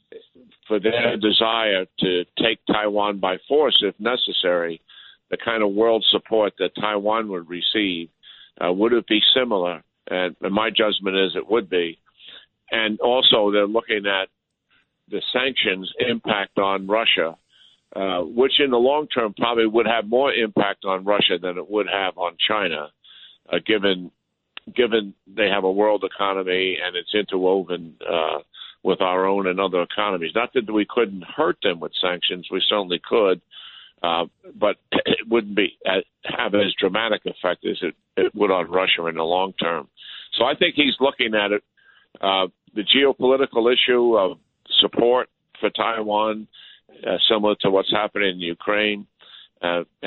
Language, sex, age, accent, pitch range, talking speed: English, male, 50-69, American, 95-115 Hz, 160 wpm